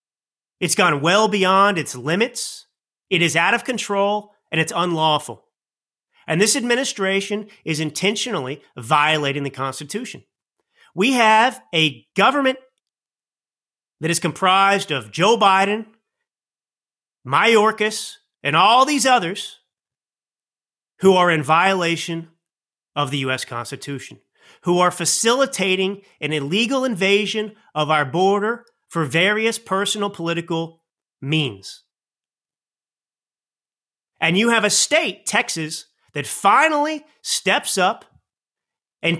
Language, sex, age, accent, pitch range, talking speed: English, male, 30-49, American, 160-220 Hz, 105 wpm